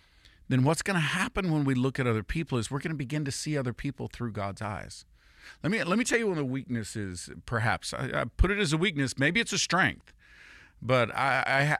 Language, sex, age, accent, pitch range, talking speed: English, male, 50-69, American, 100-130 Hz, 240 wpm